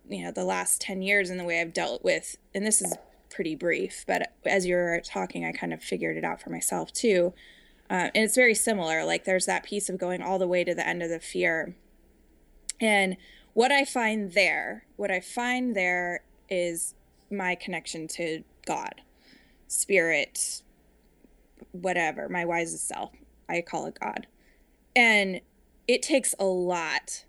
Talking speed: 170 wpm